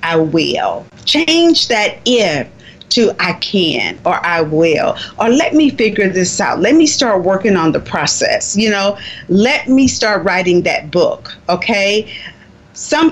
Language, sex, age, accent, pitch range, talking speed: English, female, 40-59, American, 165-230 Hz, 155 wpm